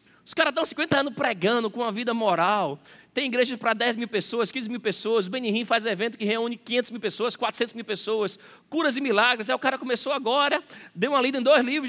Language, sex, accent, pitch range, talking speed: Portuguese, male, Brazilian, 225-285 Hz, 225 wpm